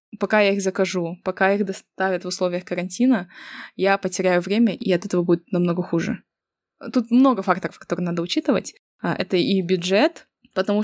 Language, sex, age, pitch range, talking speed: Russian, female, 20-39, 185-225 Hz, 160 wpm